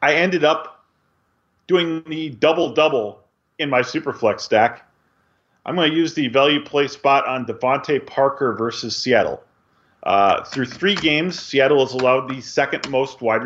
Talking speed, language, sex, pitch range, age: 150 wpm, English, male, 130-170 Hz, 40-59